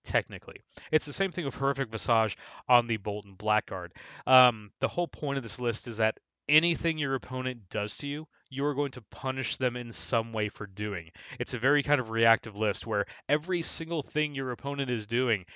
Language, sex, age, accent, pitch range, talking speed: English, male, 30-49, American, 105-135 Hz, 200 wpm